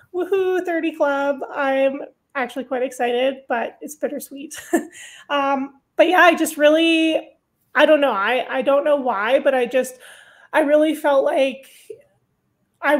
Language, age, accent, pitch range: English, 30-49, American, 245-290 Hz